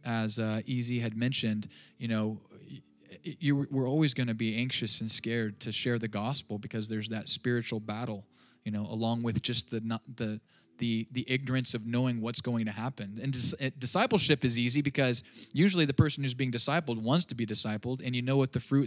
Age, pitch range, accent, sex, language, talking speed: 20-39, 110-125 Hz, American, male, English, 205 wpm